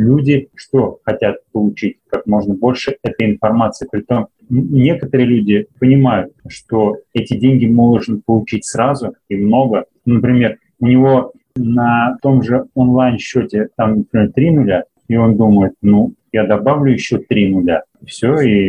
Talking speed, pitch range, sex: 140 wpm, 110-130 Hz, male